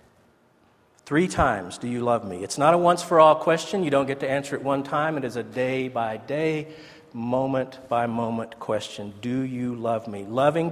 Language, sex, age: English, male, 50-69